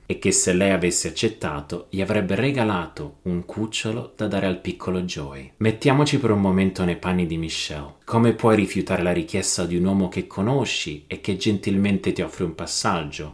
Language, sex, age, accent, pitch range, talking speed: Italian, male, 30-49, native, 80-105 Hz, 185 wpm